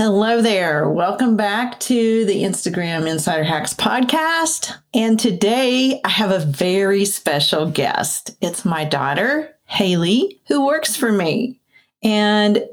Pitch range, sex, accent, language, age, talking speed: 175-220 Hz, female, American, English, 40-59, 125 wpm